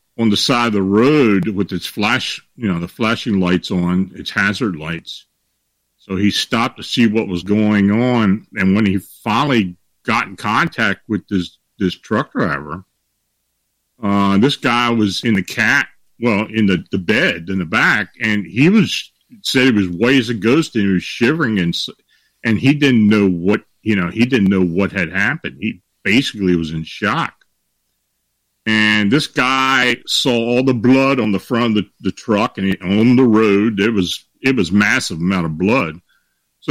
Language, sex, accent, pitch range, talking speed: English, male, American, 95-125 Hz, 185 wpm